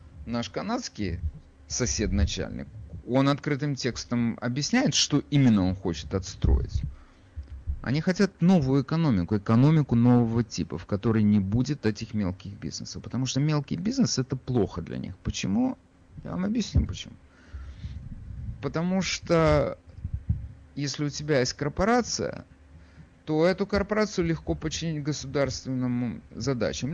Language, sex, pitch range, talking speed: Russian, male, 90-145 Hz, 120 wpm